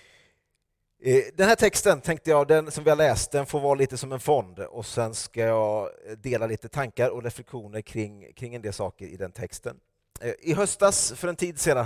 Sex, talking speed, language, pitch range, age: male, 200 wpm, Swedish, 110-140 Hz, 30-49